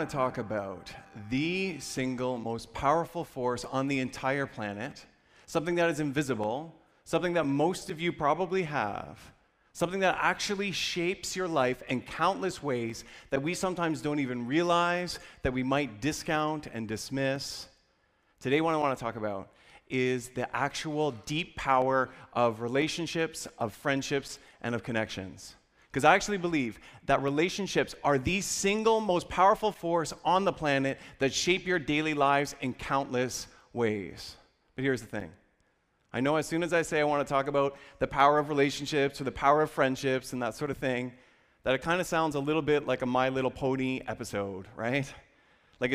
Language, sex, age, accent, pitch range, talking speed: English, male, 30-49, American, 125-165 Hz, 170 wpm